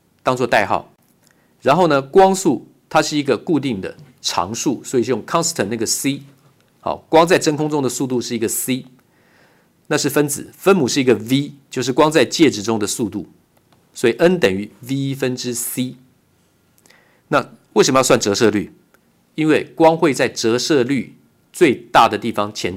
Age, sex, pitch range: 50-69, male, 110-150 Hz